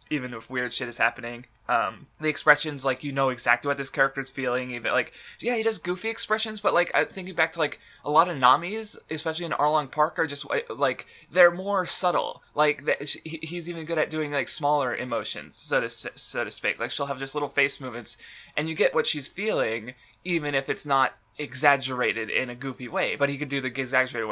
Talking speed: 220 wpm